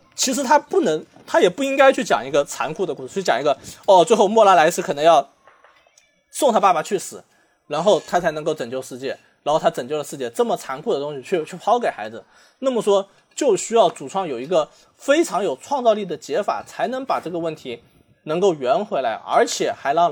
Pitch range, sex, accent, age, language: 145-220 Hz, male, native, 20-39, Chinese